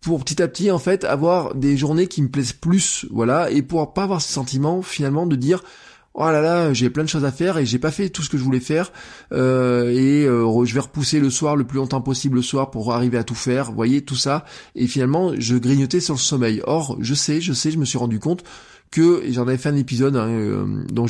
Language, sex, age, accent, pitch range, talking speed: French, male, 20-39, French, 120-155 Hz, 255 wpm